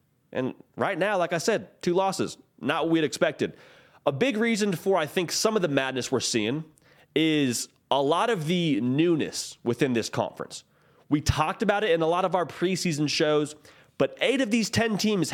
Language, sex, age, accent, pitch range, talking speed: English, male, 30-49, American, 145-185 Hz, 195 wpm